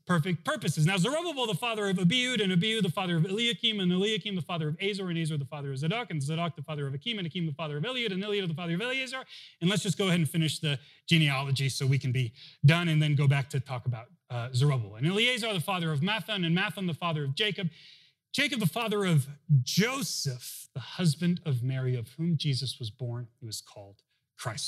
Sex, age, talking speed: male, 30-49, 235 wpm